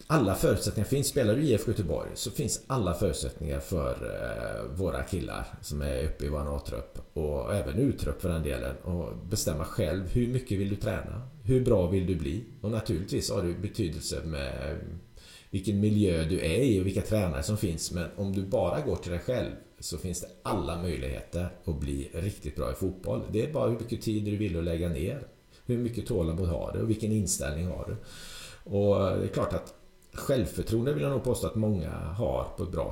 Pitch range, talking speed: 85-110 Hz, 205 wpm